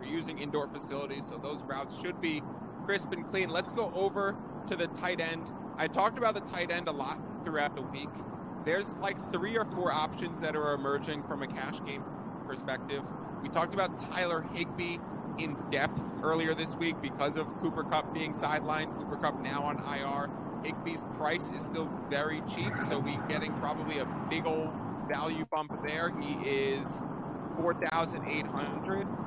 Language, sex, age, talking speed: English, male, 30-49, 170 wpm